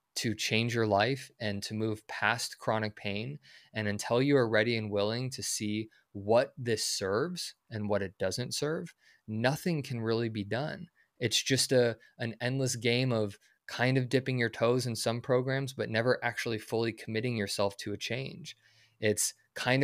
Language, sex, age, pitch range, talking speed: English, male, 20-39, 110-135 Hz, 175 wpm